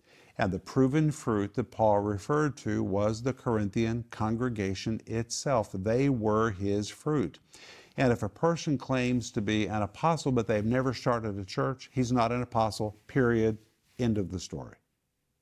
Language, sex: English, male